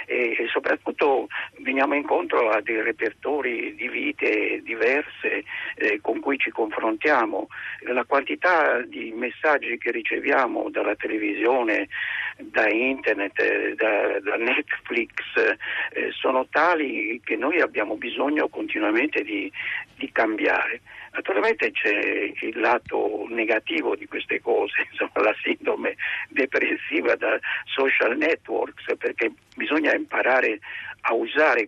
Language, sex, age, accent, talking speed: Italian, male, 50-69, native, 110 wpm